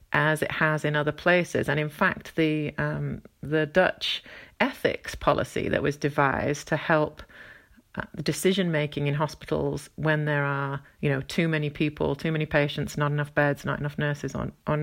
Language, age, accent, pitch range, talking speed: English, 40-59, British, 145-170 Hz, 175 wpm